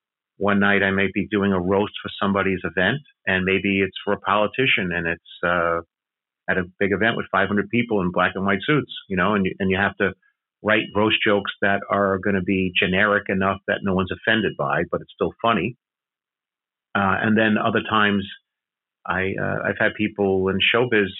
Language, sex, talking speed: English, male, 200 wpm